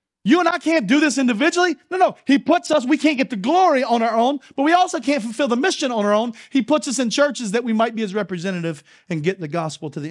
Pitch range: 215-300 Hz